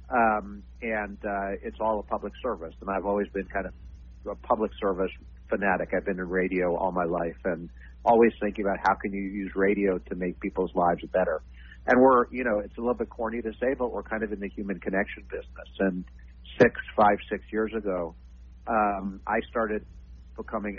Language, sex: English, male